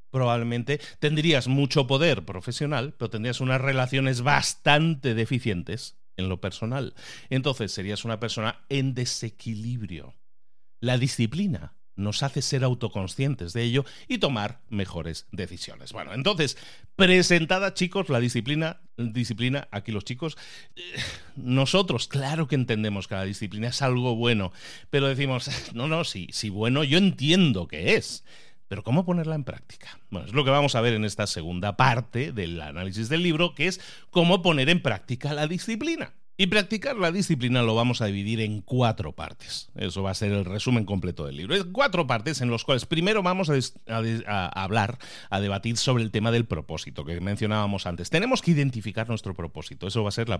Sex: male